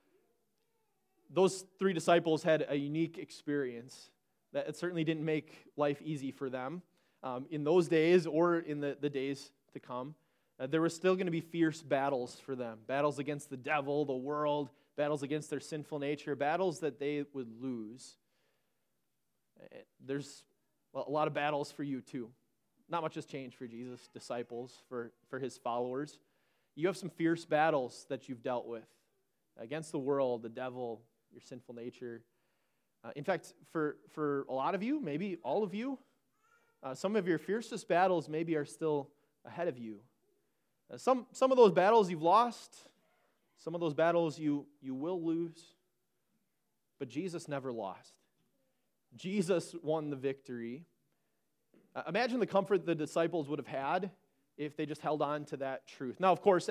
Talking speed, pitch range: 170 wpm, 135-170 Hz